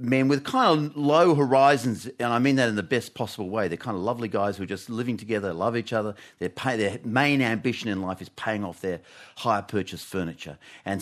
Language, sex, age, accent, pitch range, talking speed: English, male, 40-59, Australian, 100-140 Hz, 230 wpm